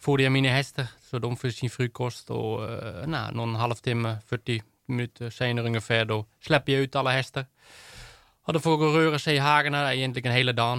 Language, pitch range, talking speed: Swedish, 110-130 Hz, 195 wpm